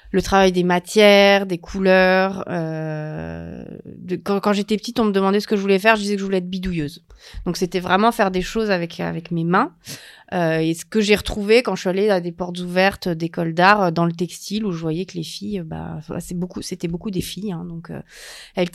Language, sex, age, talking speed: French, female, 30-49, 230 wpm